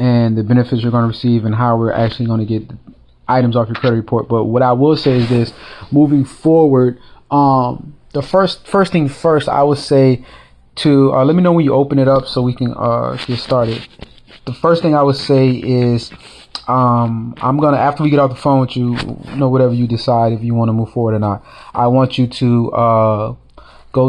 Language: English